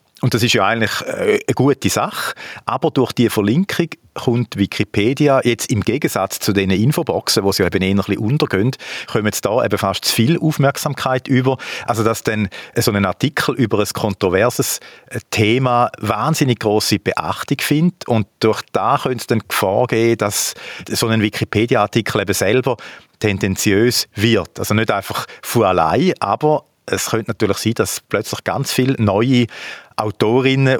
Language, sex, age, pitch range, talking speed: German, male, 40-59, 100-125 Hz, 155 wpm